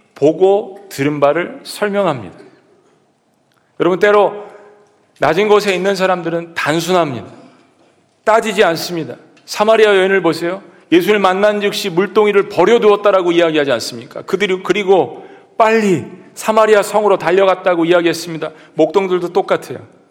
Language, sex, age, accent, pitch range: Korean, male, 40-59, native, 160-205 Hz